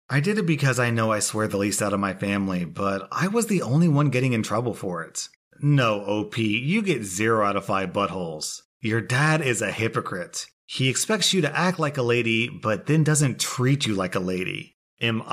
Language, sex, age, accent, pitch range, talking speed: English, male, 30-49, American, 100-130 Hz, 220 wpm